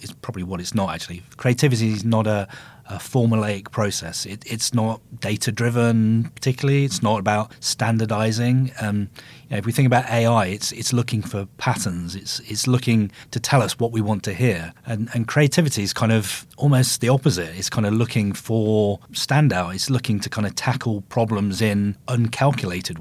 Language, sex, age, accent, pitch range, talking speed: English, male, 30-49, British, 105-125 Hz, 175 wpm